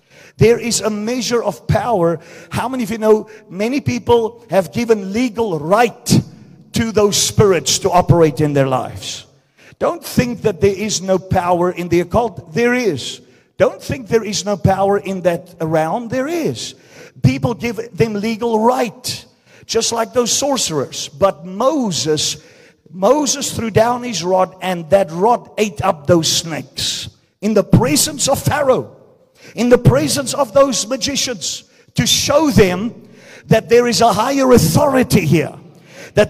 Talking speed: 155 wpm